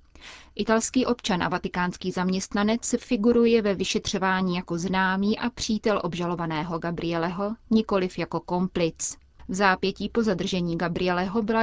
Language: Czech